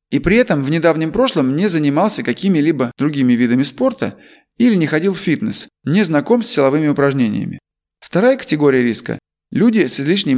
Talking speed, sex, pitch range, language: 160 wpm, male, 140-200 Hz, Russian